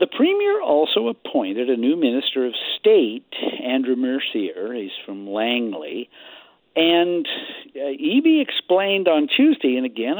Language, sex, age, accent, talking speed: English, male, 60-79, American, 130 wpm